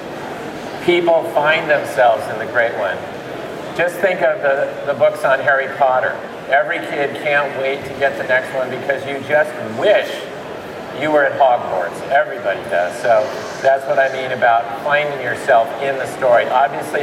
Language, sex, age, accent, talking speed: English, male, 50-69, American, 165 wpm